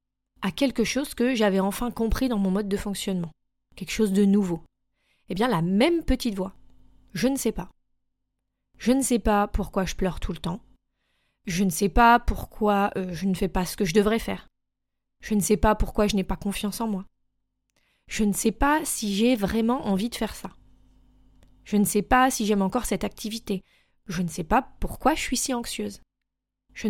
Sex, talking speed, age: female, 205 wpm, 20-39